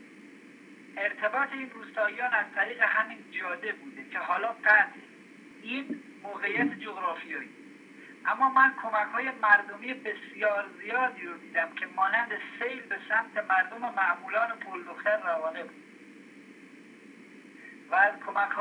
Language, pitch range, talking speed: English, 215-285 Hz, 125 wpm